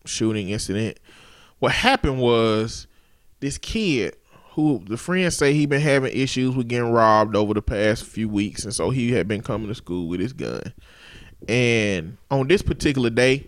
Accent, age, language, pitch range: American, 20-39, English, 110-155 Hz